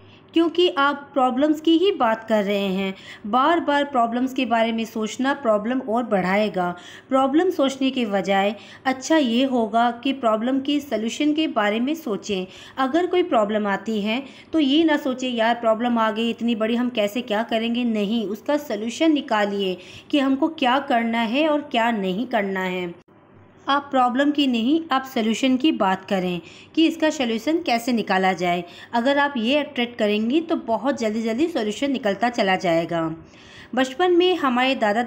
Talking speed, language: 170 wpm, Hindi